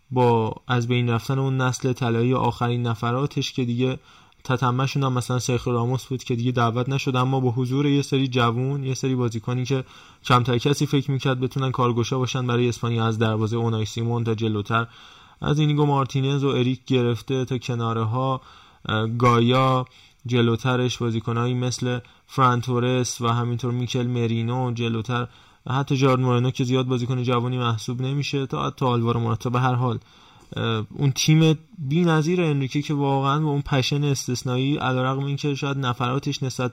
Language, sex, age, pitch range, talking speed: Persian, male, 20-39, 120-140 Hz, 165 wpm